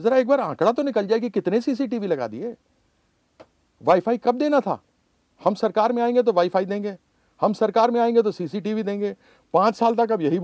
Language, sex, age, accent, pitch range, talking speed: Hindi, male, 50-69, native, 155-225 Hz, 220 wpm